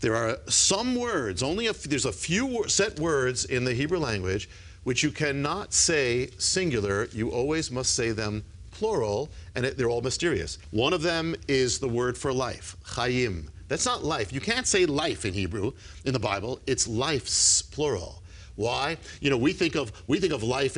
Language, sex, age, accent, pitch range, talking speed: English, male, 50-69, American, 95-135 Hz, 180 wpm